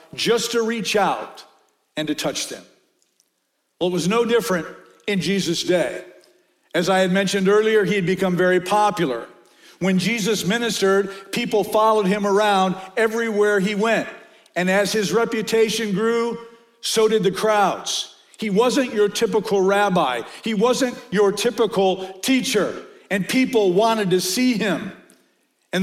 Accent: American